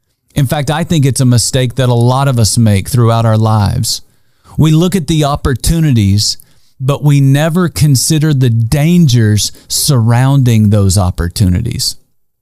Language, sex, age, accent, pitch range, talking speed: English, male, 40-59, American, 110-140 Hz, 145 wpm